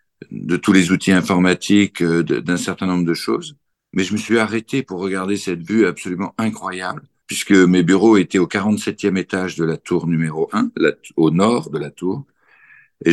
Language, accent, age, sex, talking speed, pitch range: French, French, 60-79, male, 185 wpm, 90-105 Hz